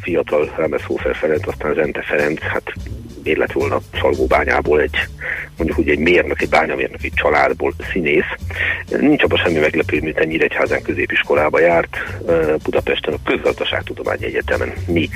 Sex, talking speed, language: male, 135 wpm, Hungarian